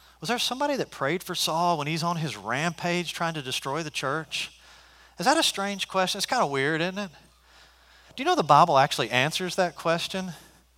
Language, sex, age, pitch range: English, male, 40-59, 135-180 Hz